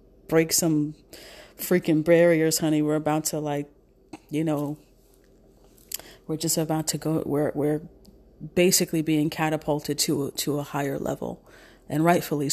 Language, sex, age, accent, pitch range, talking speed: English, female, 40-59, American, 150-180 Hz, 135 wpm